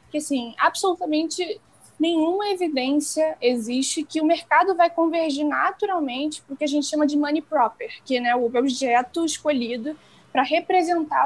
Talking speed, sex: 150 wpm, female